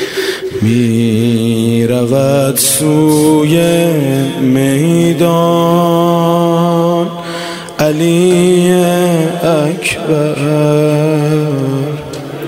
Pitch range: 125-150 Hz